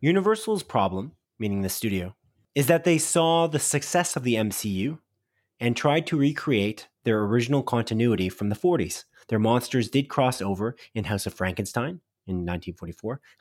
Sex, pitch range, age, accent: male, 110-150 Hz, 30-49, American